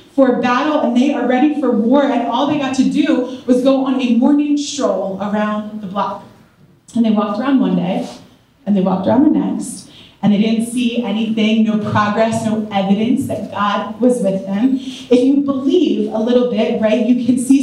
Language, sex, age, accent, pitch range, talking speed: English, female, 30-49, American, 220-280 Hz, 200 wpm